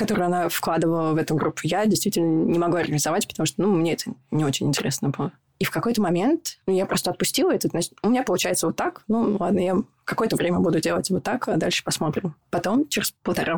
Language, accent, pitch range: Russian, native, 150-185 Hz